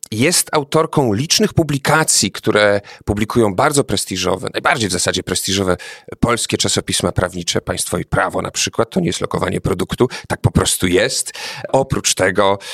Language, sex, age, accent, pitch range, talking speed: Polish, male, 40-59, native, 100-135 Hz, 145 wpm